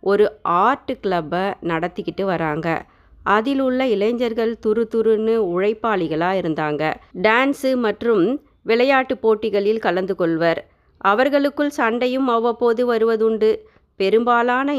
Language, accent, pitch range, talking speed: Tamil, native, 190-235 Hz, 95 wpm